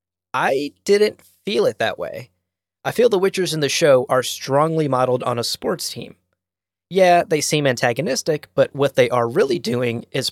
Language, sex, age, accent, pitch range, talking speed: English, male, 20-39, American, 110-140 Hz, 180 wpm